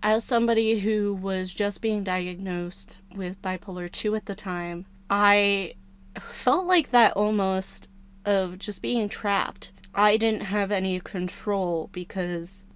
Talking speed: 130 wpm